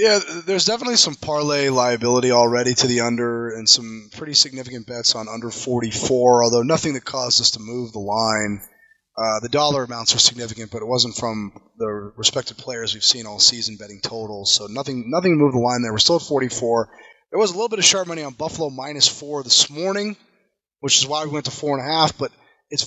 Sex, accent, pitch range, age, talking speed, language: male, American, 120-155 Hz, 20-39, 220 wpm, English